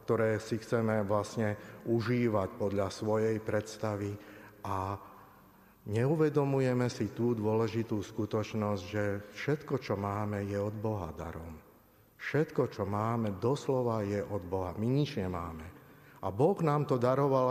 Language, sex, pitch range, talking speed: Slovak, male, 100-125 Hz, 125 wpm